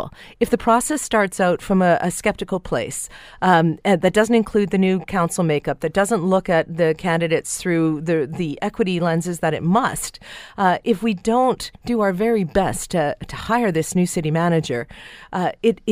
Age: 40-59